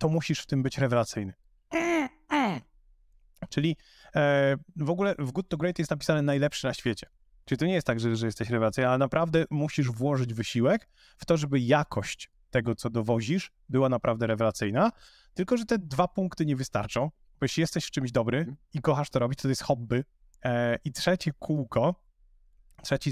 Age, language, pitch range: 30-49, Polish, 130-175 Hz